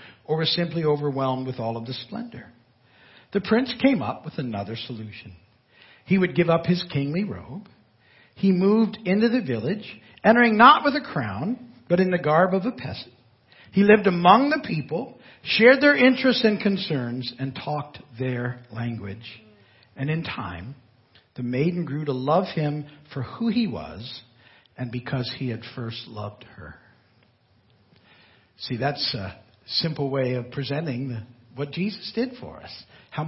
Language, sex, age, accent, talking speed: English, male, 60-79, American, 155 wpm